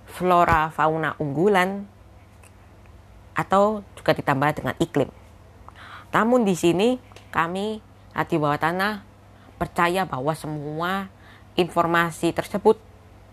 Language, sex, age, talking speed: Indonesian, female, 20-39, 90 wpm